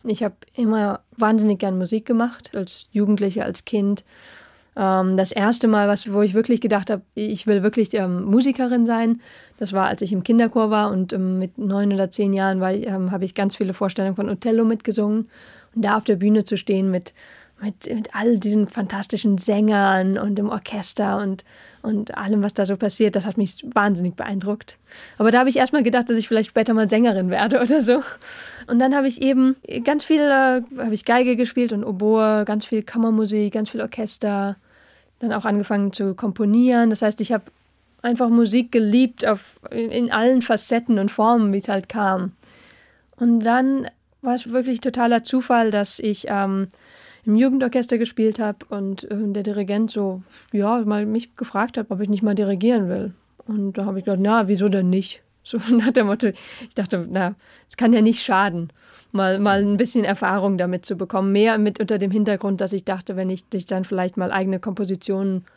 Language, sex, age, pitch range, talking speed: German, female, 20-39, 200-230 Hz, 185 wpm